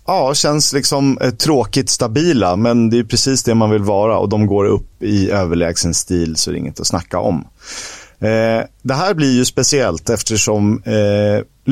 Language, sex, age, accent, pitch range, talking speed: Swedish, male, 30-49, native, 95-120 Hz, 190 wpm